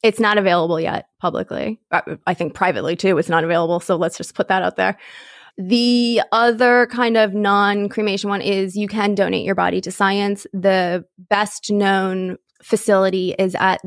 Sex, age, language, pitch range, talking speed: female, 20-39, English, 185-215 Hz, 175 wpm